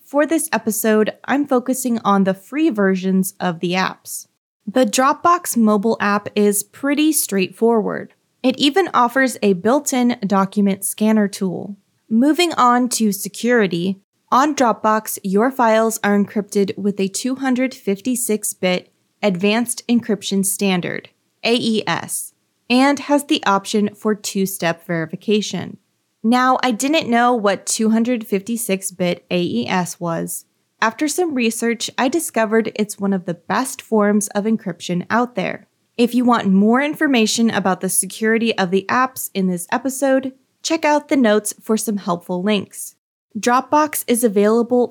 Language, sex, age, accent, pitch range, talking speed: English, female, 20-39, American, 200-245 Hz, 130 wpm